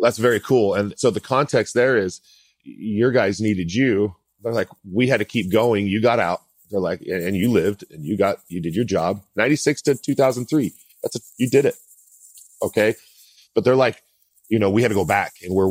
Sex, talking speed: male, 215 wpm